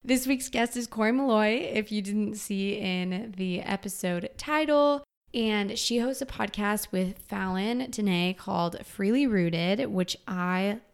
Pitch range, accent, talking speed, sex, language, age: 185-245 Hz, American, 150 wpm, female, English, 20-39